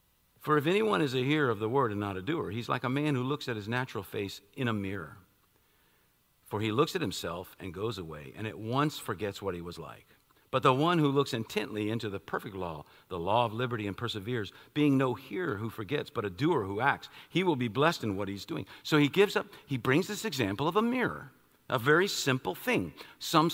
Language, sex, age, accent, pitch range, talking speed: English, male, 50-69, American, 105-150 Hz, 235 wpm